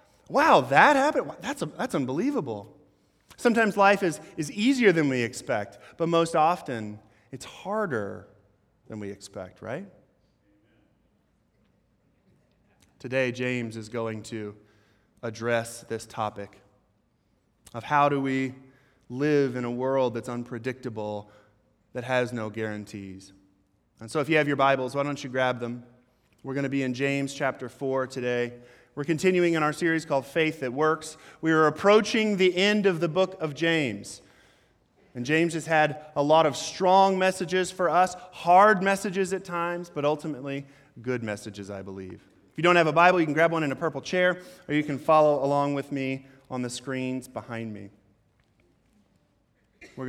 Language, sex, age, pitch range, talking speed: English, male, 20-39, 115-160 Hz, 160 wpm